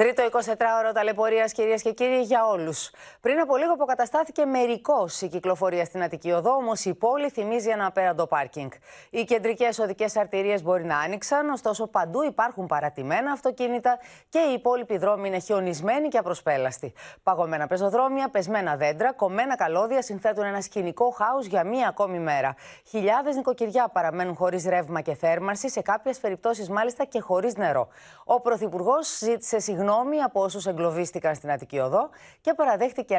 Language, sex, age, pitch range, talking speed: Greek, female, 30-49, 180-250 Hz, 150 wpm